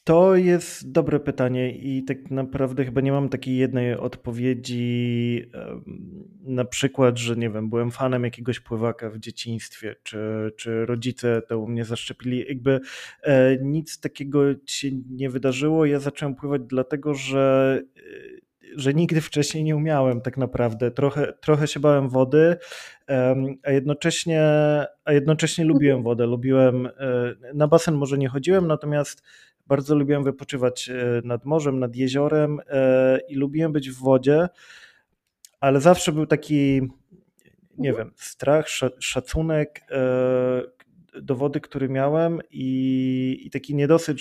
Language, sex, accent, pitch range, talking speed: Polish, male, native, 125-150 Hz, 125 wpm